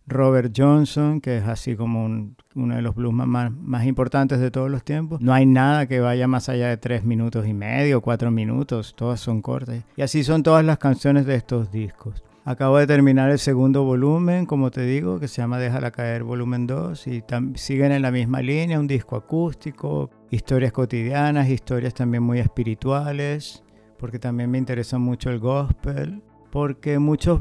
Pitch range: 115-140 Hz